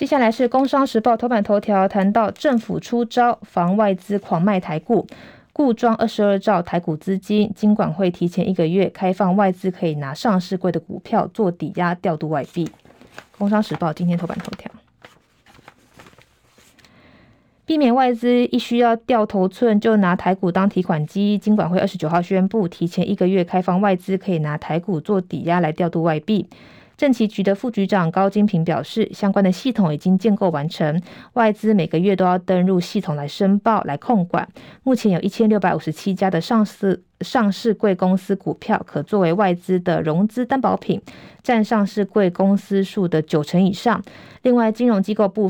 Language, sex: Chinese, female